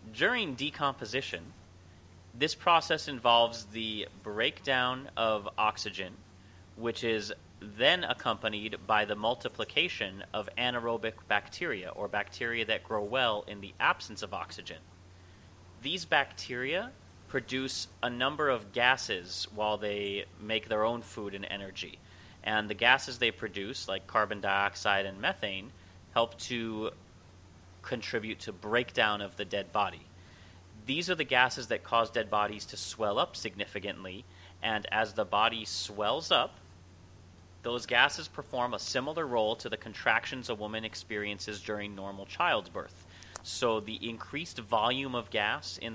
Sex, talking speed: male, 135 wpm